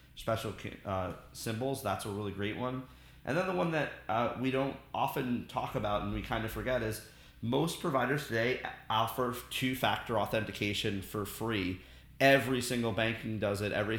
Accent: American